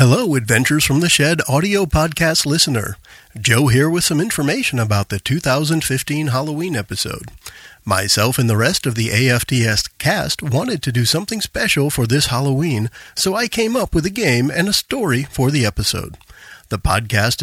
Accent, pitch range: American, 115-155 Hz